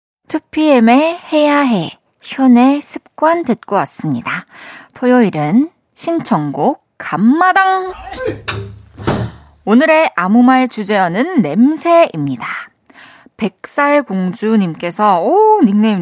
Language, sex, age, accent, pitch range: Korean, female, 20-39, native, 185-280 Hz